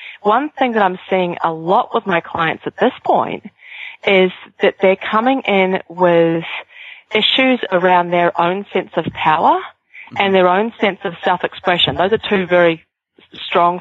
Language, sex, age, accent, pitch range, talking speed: English, female, 30-49, Australian, 170-200 Hz, 160 wpm